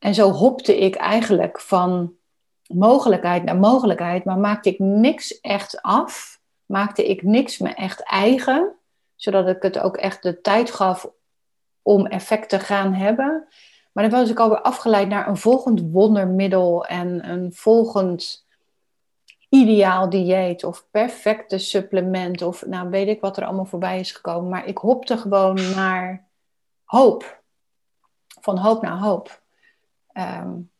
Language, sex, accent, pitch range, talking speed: Dutch, female, Dutch, 185-215 Hz, 140 wpm